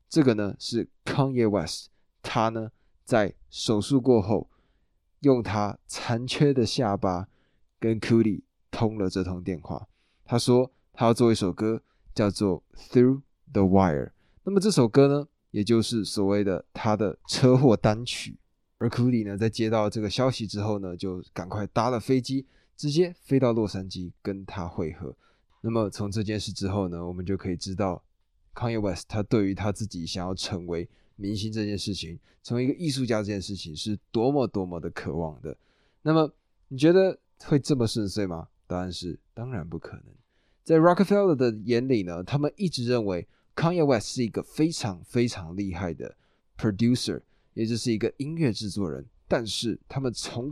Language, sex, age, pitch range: Chinese, male, 20-39, 95-125 Hz